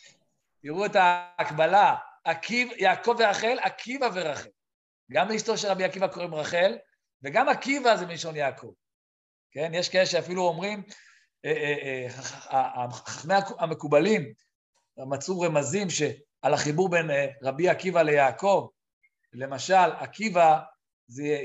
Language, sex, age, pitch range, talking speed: Hebrew, male, 50-69, 145-200 Hz, 115 wpm